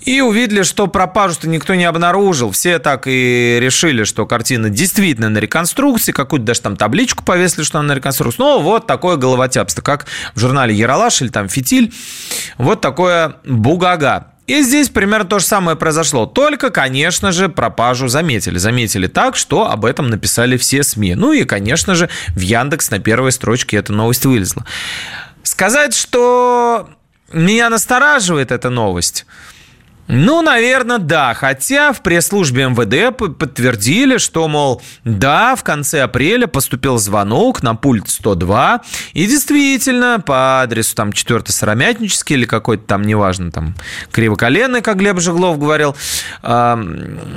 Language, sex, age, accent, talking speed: Russian, male, 30-49, native, 140 wpm